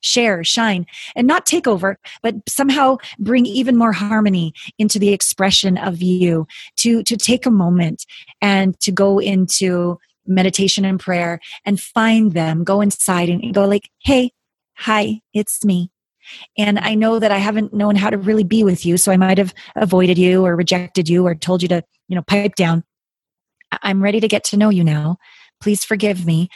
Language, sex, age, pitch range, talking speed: English, female, 30-49, 180-210 Hz, 185 wpm